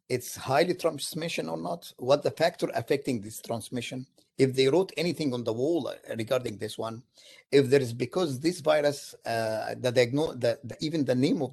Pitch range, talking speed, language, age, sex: 115-150 Hz, 195 wpm, English, 50-69, male